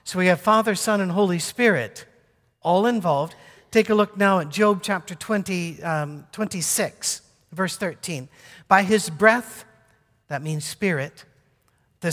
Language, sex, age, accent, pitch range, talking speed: English, male, 50-69, American, 160-210 Hz, 140 wpm